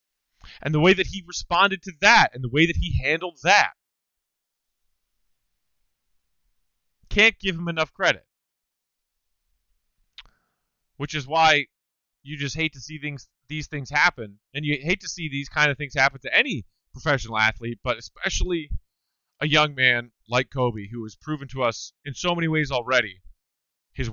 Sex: male